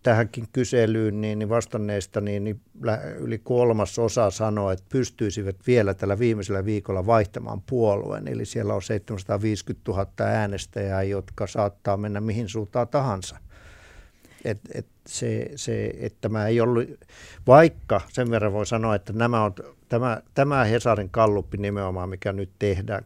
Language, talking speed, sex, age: Finnish, 140 wpm, male, 50-69